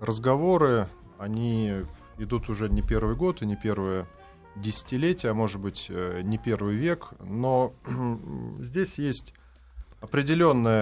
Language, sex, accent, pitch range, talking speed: Russian, male, native, 100-120 Hz, 115 wpm